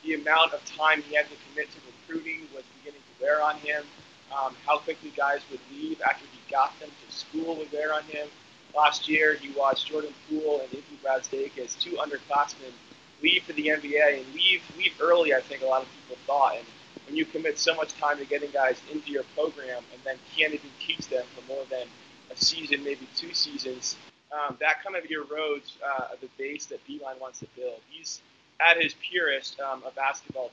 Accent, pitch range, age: American, 135-155 Hz, 20-39